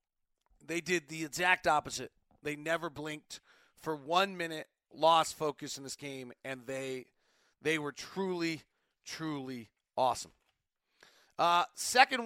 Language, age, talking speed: English, 40-59, 120 wpm